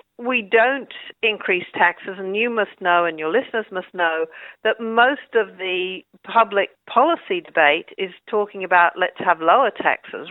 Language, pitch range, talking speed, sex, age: English, 180-240 Hz, 155 wpm, female, 50-69